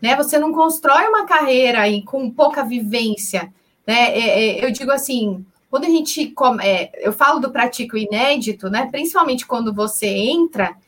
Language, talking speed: Portuguese, 125 wpm